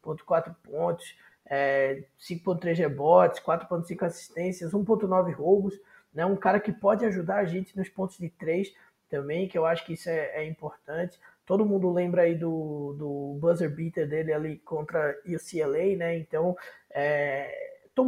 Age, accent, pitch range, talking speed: 20-39, Brazilian, 165-210 Hz, 155 wpm